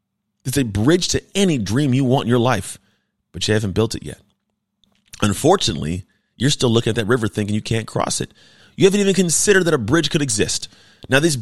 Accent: American